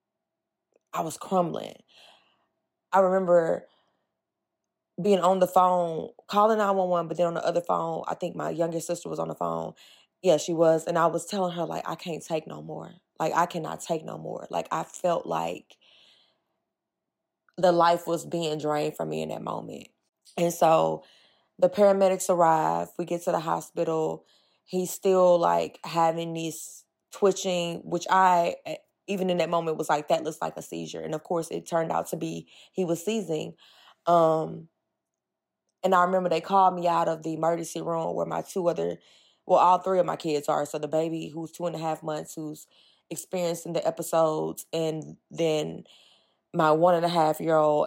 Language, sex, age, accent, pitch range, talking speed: English, female, 20-39, American, 155-175 Hz, 180 wpm